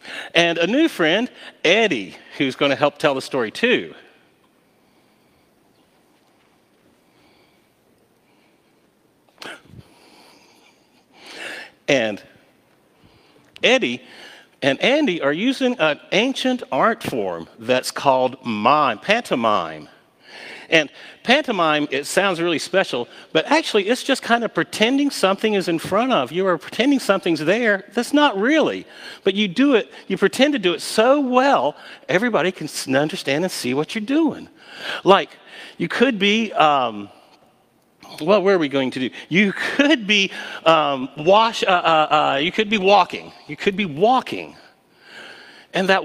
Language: English